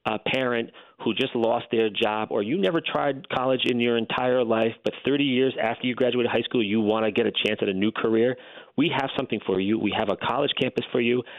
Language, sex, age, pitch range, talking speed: English, male, 40-59, 110-140 Hz, 245 wpm